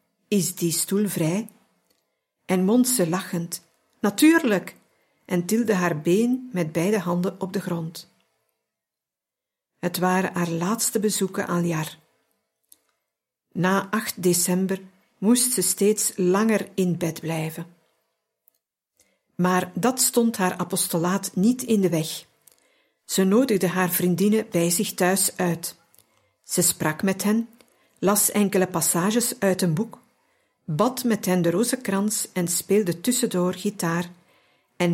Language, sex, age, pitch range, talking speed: Dutch, female, 50-69, 175-220 Hz, 125 wpm